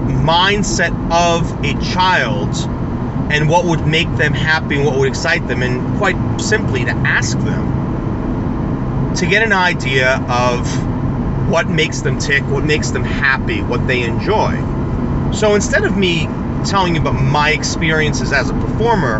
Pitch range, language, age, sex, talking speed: 125-155 Hz, English, 40-59, male, 155 wpm